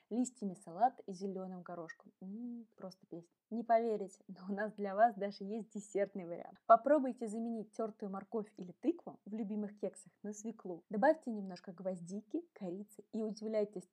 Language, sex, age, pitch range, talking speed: Russian, female, 20-39, 200-240 Hz, 155 wpm